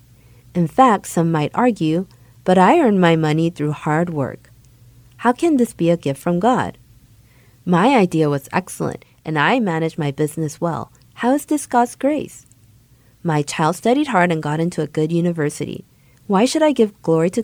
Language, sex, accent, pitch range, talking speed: English, female, American, 145-195 Hz, 180 wpm